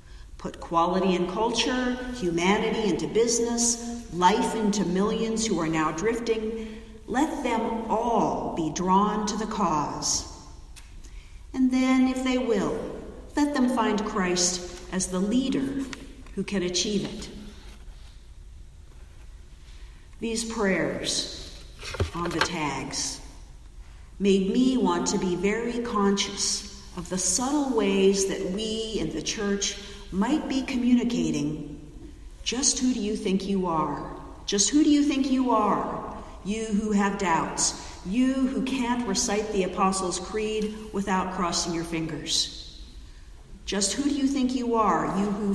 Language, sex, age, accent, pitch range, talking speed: English, female, 50-69, American, 170-225 Hz, 130 wpm